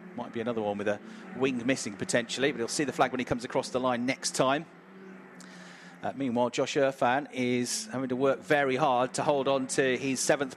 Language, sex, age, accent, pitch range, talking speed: English, male, 40-59, British, 115-140 Hz, 215 wpm